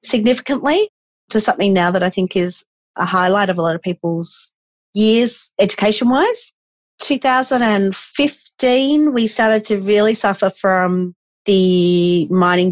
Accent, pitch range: Australian, 170-205 Hz